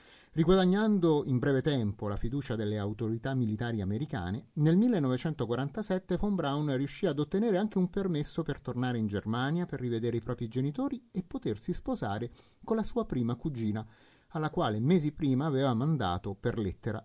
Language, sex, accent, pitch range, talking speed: Italian, male, native, 115-170 Hz, 160 wpm